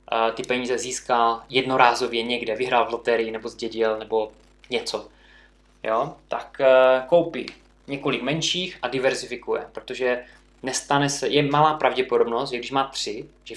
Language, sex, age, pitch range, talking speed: Czech, male, 20-39, 115-125 Hz, 135 wpm